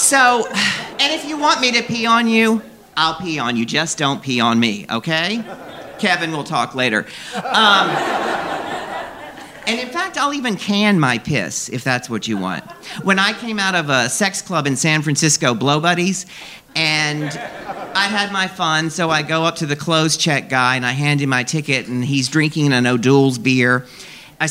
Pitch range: 135-210 Hz